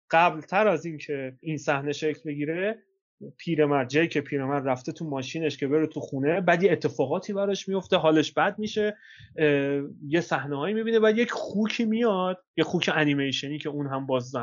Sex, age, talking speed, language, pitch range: male, 30-49, 170 wpm, Persian, 145-185 Hz